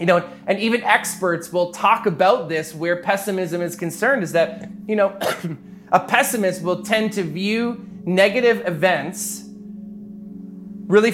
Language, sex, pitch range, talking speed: English, male, 180-215 Hz, 140 wpm